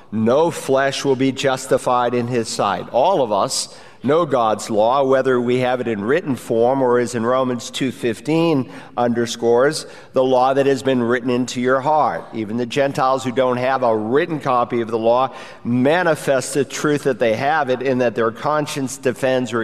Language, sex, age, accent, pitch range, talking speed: English, male, 50-69, American, 120-140 Hz, 185 wpm